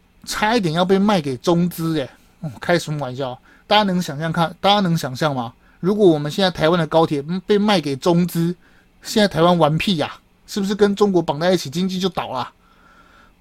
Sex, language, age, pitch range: male, Chinese, 30-49, 145-185 Hz